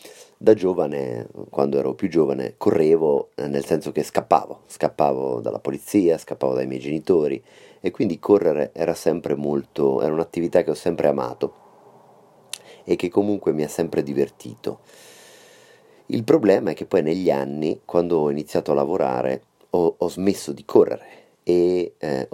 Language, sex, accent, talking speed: Italian, male, native, 150 wpm